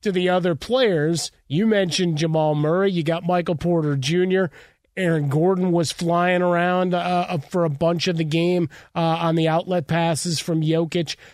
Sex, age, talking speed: male, 30-49, 170 wpm